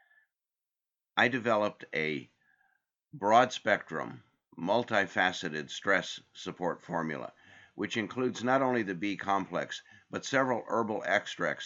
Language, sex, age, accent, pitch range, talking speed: English, male, 50-69, American, 85-120 Hz, 100 wpm